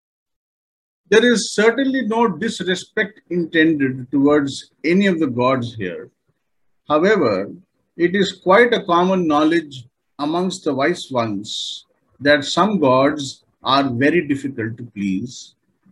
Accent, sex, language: Indian, male, English